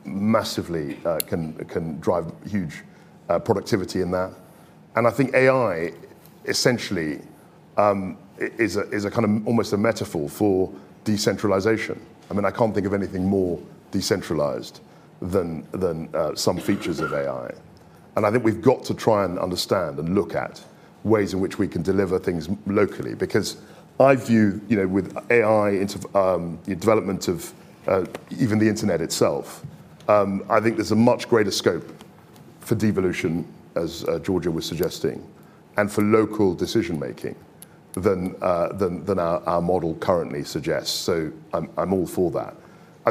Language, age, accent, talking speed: English, 40-59, British, 160 wpm